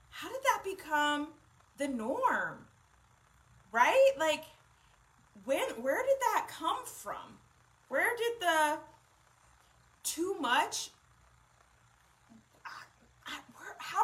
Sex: female